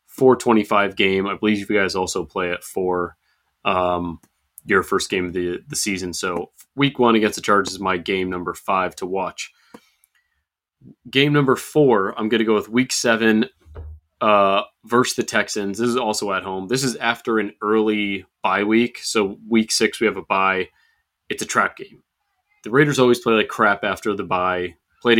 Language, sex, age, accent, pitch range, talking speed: English, male, 30-49, American, 90-115 Hz, 185 wpm